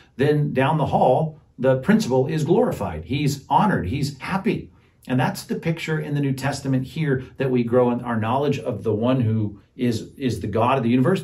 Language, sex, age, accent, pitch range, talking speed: English, male, 50-69, American, 110-135 Hz, 205 wpm